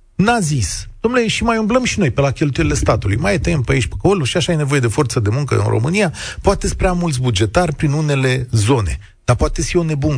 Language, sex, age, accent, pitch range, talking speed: Romanian, male, 40-59, native, 110-165 Hz, 230 wpm